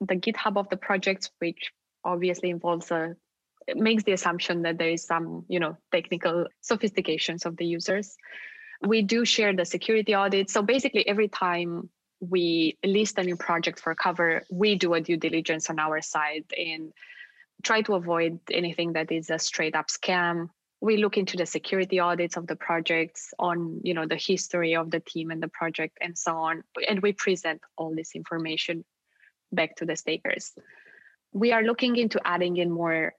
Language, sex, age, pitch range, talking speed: English, female, 20-39, 165-195 Hz, 180 wpm